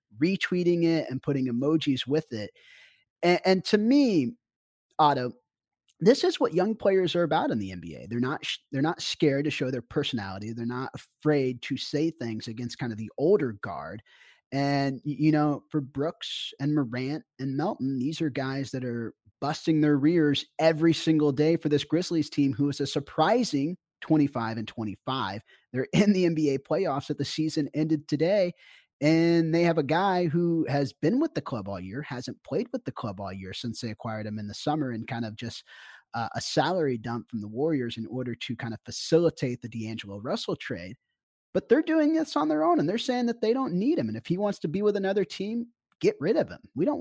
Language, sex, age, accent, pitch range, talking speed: English, male, 20-39, American, 125-170 Hz, 205 wpm